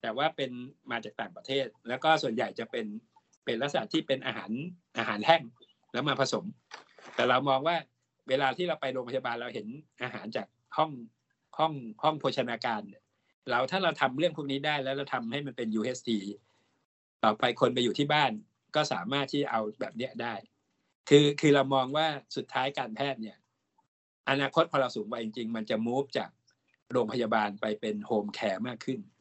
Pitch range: 115-145 Hz